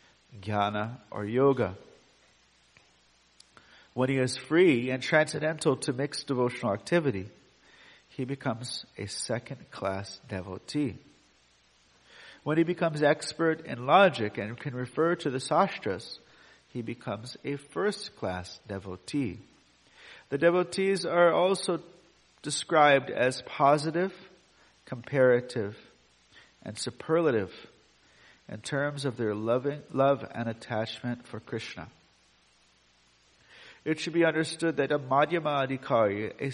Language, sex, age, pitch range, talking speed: English, male, 50-69, 110-155 Hz, 105 wpm